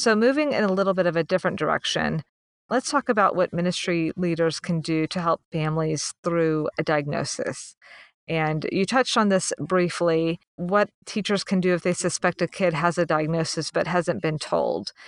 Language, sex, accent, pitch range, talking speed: English, female, American, 160-185 Hz, 185 wpm